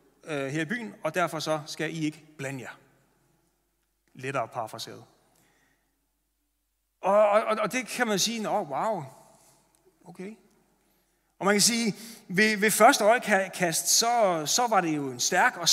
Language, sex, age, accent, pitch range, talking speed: Danish, male, 30-49, native, 155-200 Hz, 150 wpm